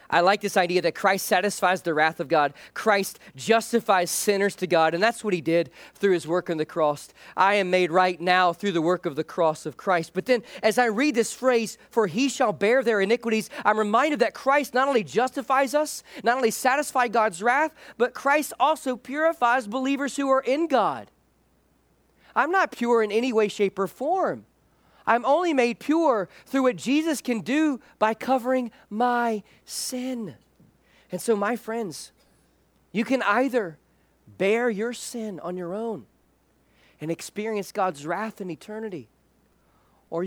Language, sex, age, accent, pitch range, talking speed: English, male, 40-59, American, 180-250 Hz, 175 wpm